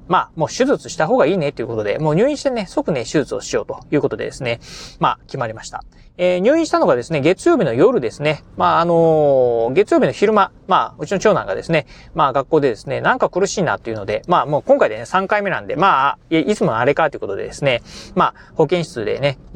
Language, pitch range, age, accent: Japanese, 140-195 Hz, 30-49, native